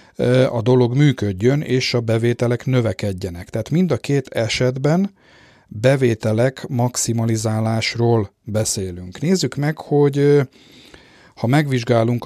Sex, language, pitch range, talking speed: male, Hungarian, 110-130 Hz, 100 wpm